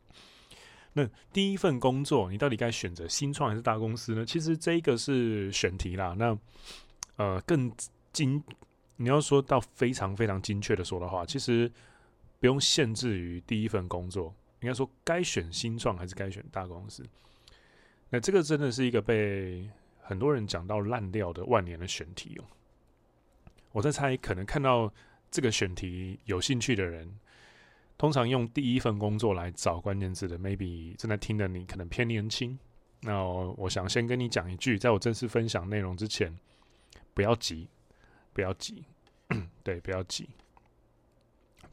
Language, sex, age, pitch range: Chinese, male, 20-39, 95-125 Hz